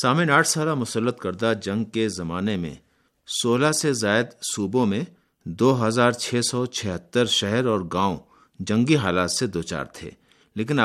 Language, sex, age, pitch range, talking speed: Urdu, male, 50-69, 100-130 Hz, 160 wpm